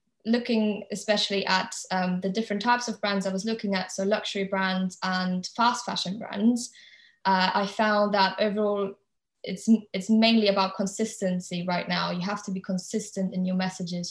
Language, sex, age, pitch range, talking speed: English, female, 10-29, 185-215 Hz, 170 wpm